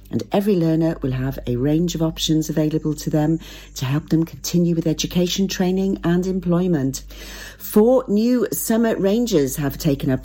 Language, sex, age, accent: English, female, 50-69, British